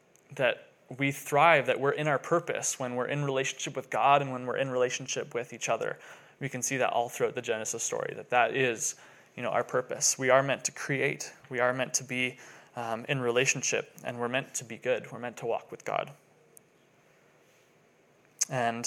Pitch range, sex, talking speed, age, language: 125-145 Hz, male, 205 wpm, 20-39, English